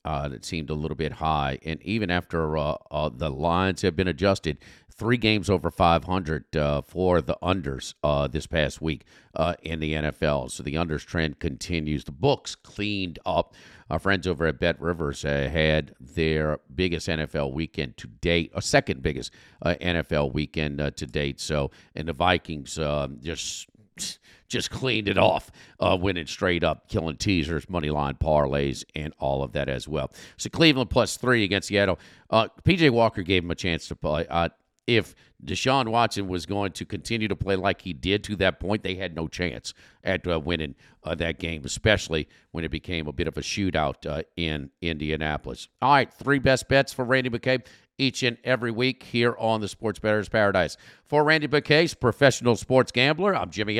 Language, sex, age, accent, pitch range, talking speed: English, male, 50-69, American, 75-105 Hz, 190 wpm